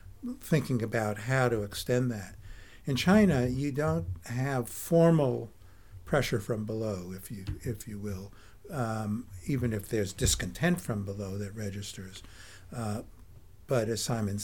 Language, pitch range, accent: English, 105-130 Hz, American